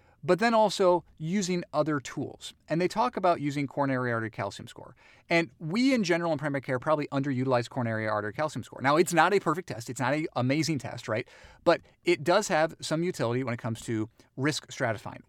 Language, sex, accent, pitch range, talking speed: English, male, American, 120-165 Hz, 205 wpm